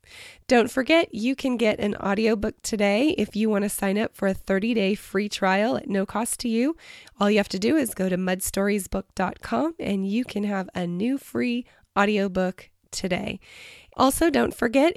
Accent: American